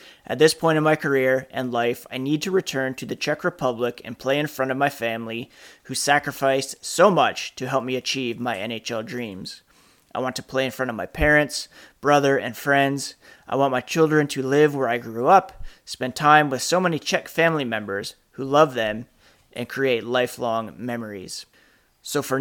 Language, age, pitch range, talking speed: English, 30-49, 125-150 Hz, 195 wpm